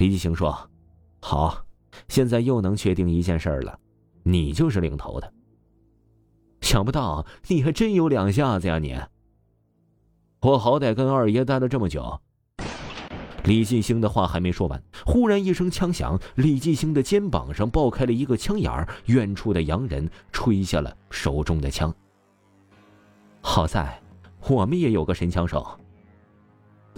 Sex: male